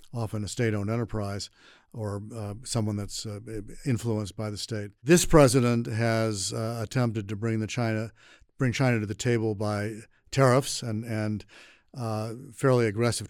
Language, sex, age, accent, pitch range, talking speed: English, male, 50-69, American, 110-125 Hz, 155 wpm